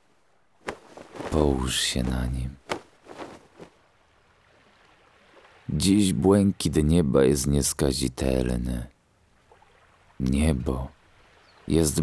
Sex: male